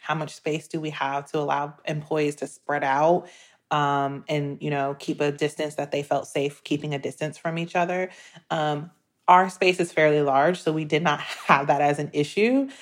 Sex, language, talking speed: female, English, 205 wpm